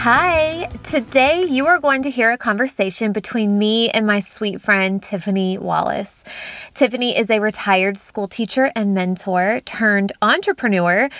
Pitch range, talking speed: 200-260 Hz, 145 wpm